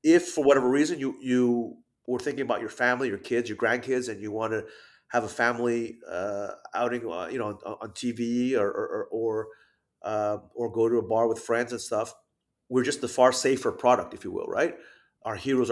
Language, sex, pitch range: English, male, 110-125 Hz